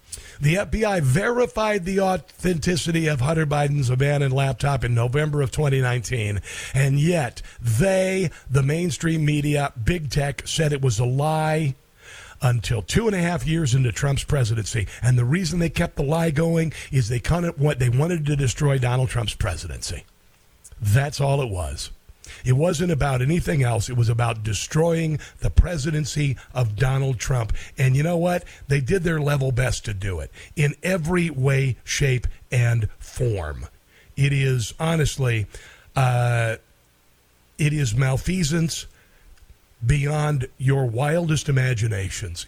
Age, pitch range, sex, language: 50-69, 110-150 Hz, male, English